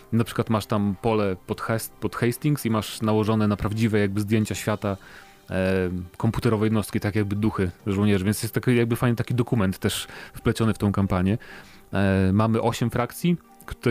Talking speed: 175 wpm